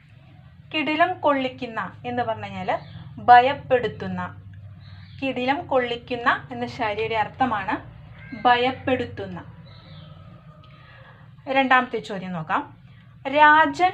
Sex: female